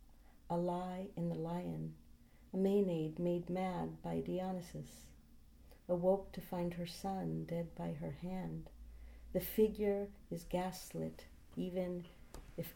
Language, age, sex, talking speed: English, 50-69, female, 120 wpm